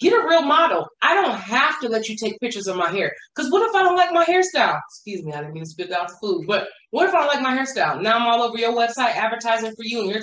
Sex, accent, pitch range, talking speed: female, American, 230-350 Hz, 300 wpm